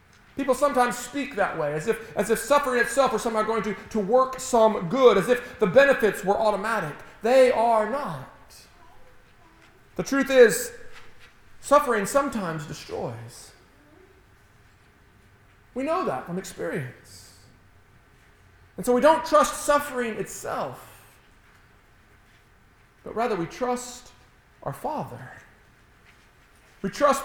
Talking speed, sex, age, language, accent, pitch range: 120 wpm, male, 40-59, English, American, 165-260 Hz